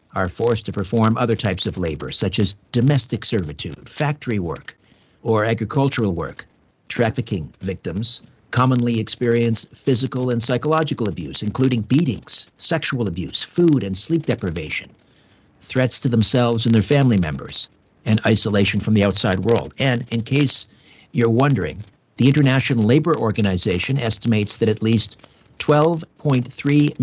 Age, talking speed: 60-79, 135 wpm